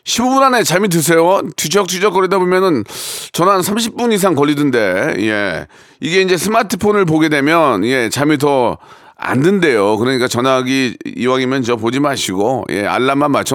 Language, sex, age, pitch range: Korean, male, 40-59, 130-170 Hz